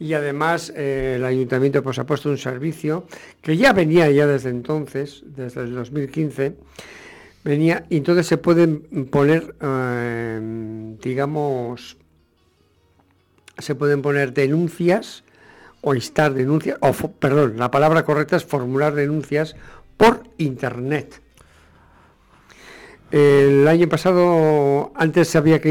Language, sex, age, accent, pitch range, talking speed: English, male, 60-79, Spanish, 130-155 Hz, 115 wpm